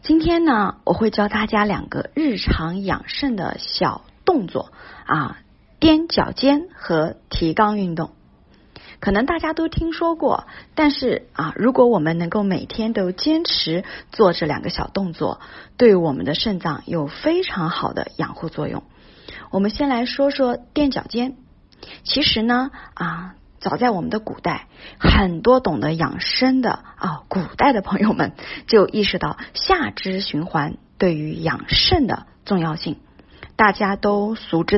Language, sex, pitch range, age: Chinese, female, 180-275 Hz, 30-49